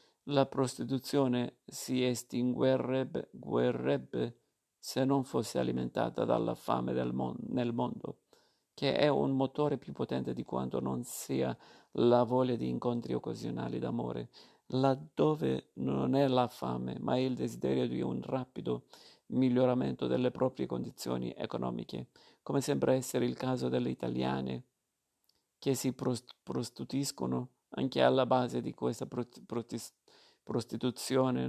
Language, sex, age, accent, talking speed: Italian, male, 50-69, native, 125 wpm